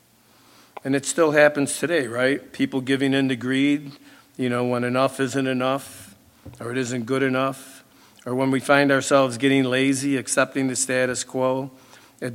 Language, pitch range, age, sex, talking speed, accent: English, 120-140 Hz, 50-69, male, 165 wpm, American